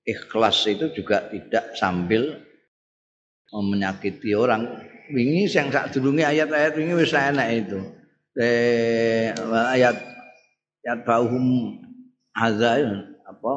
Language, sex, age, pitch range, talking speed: Indonesian, male, 50-69, 95-150 Hz, 65 wpm